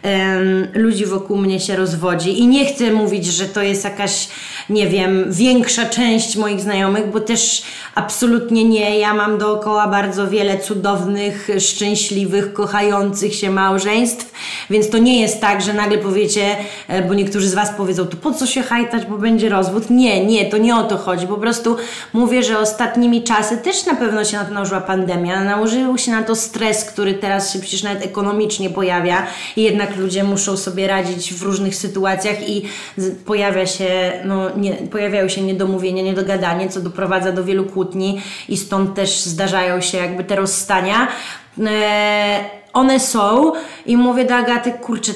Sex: female